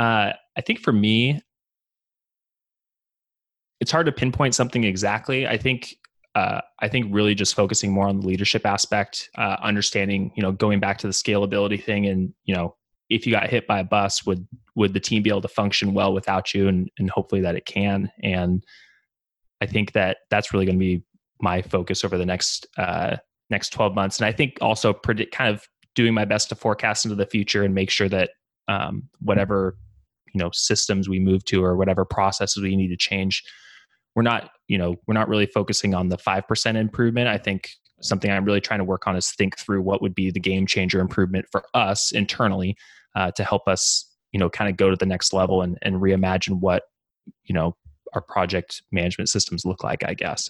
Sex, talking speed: male, 205 wpm